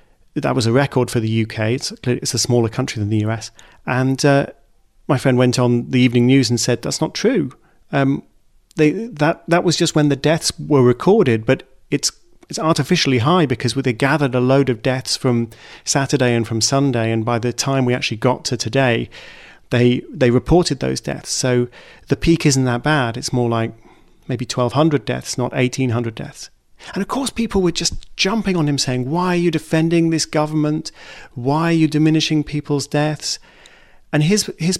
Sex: male